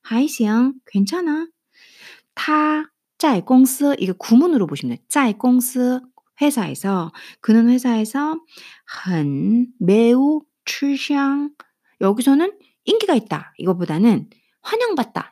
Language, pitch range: Korean, 195-280 Hz